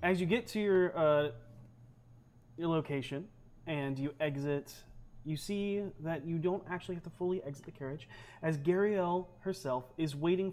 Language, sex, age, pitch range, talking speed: English, male, 30-49, 125-160 Hz, 160 wpm